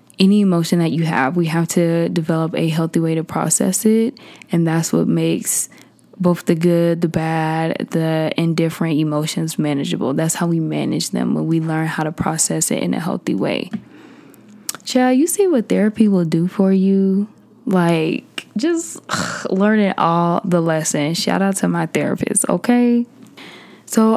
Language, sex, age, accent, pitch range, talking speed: English, female, 20-39, American, 165-195 Hz, 165 wpm